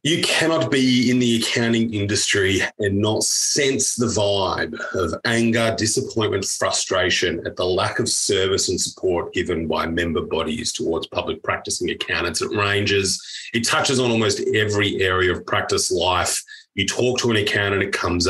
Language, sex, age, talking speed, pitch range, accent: English, male, 30-49, 160 wpm, 100-135 Hz, Australian